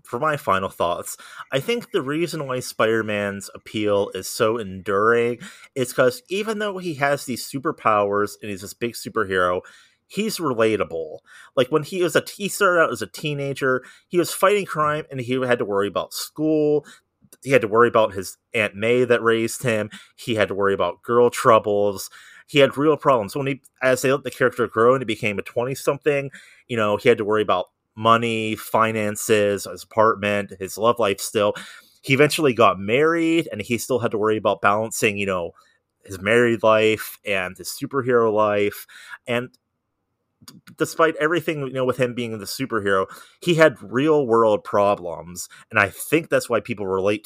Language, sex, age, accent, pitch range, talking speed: English, male, 30-49, American, 105-140 Hz, 185 wpm